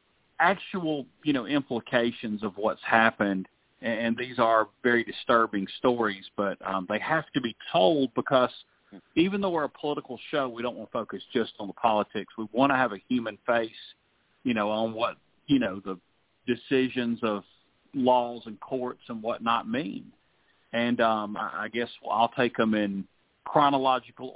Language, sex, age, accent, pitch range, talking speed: English, male, 40-59, American, 105-125 Hz, 165 wpm